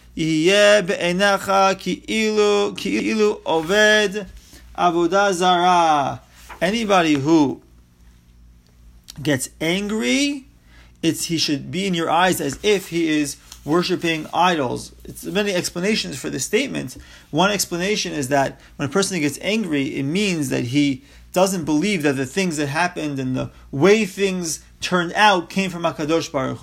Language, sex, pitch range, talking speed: English, male, 145-200 Hz, 120 wpm